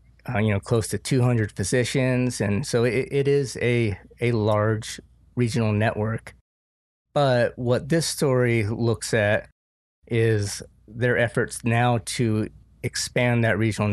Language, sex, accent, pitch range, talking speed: English, male, American, 105-125 Hz, 135 wpm